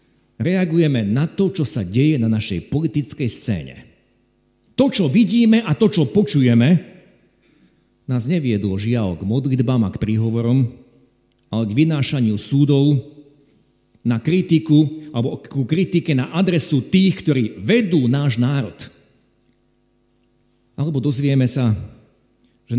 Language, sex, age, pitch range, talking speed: Slovak, male, 50-69, 120-180 Hz, 120 wpm